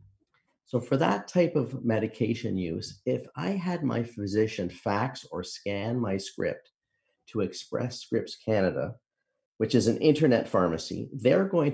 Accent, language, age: American, English, 50-69